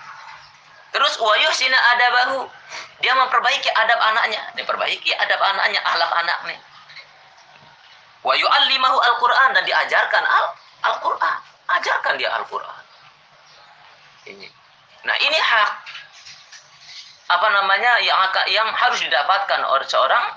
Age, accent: 30-49, native